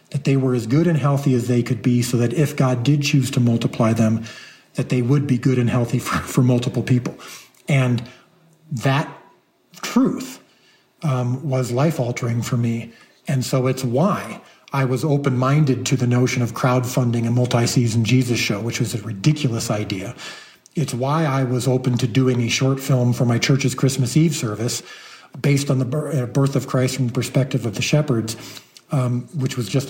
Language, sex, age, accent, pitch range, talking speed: English, male, 40-59, American, 125-145 Hz, 185 wpm